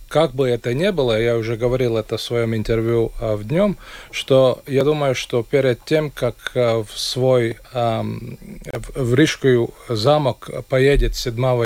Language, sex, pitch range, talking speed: Russian, male, 120-135 Hz, 145 wpm